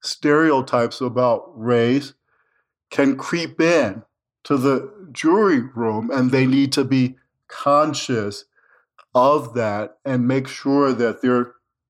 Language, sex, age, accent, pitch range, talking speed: English, male, 50-69, American, 120-135 Hz, 115 wpm